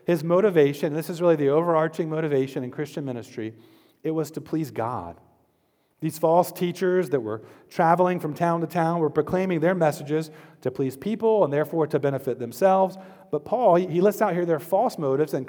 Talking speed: 185 wpm